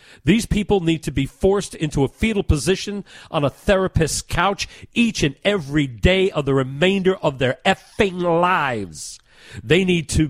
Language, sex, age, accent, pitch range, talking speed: English, male, 40-59, American, 125-165 Hz, 165 wpm